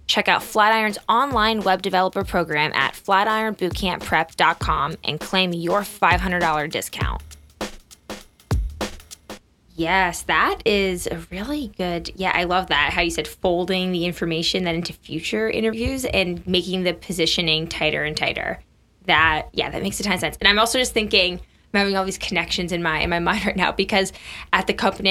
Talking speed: 165 wpm